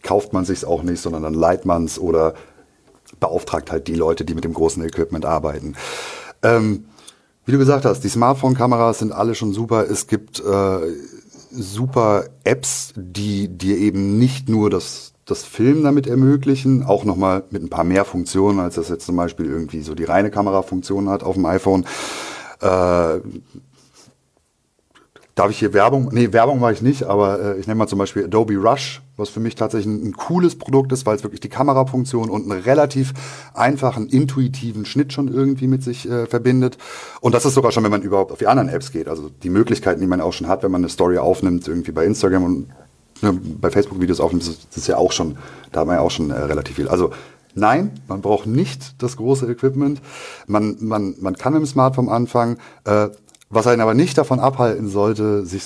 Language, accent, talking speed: German, German, 200 wpm